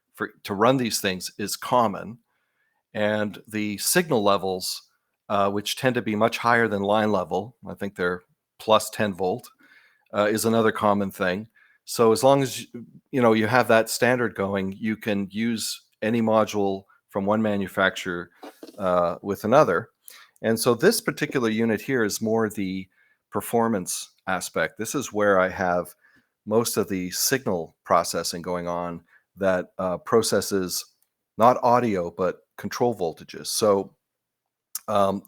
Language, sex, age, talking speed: English, male, 40-59, 145 wpm